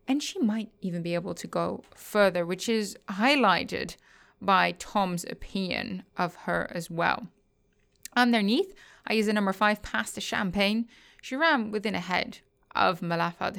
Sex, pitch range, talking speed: female, 175-220 Hz, 150 wpm